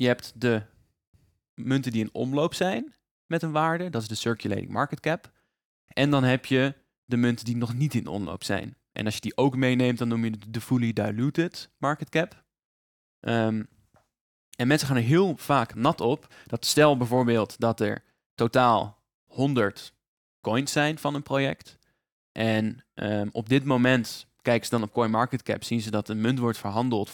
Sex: male